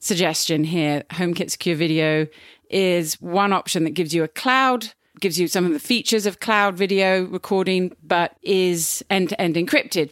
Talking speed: 160 wpm